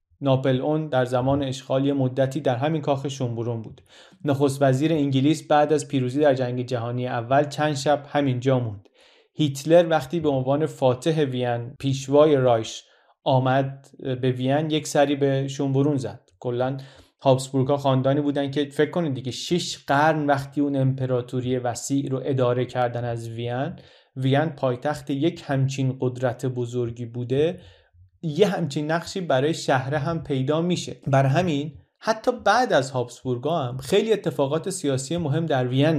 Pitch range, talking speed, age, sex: 125-150 Hz, 145 wpm, 30-49, male